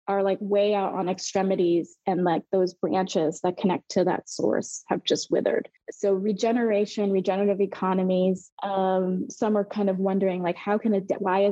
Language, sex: English, female